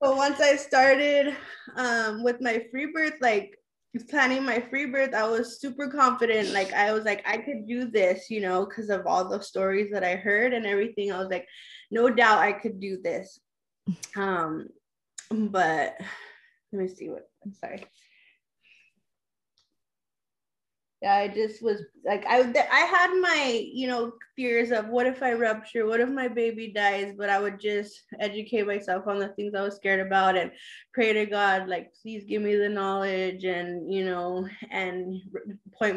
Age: 20-39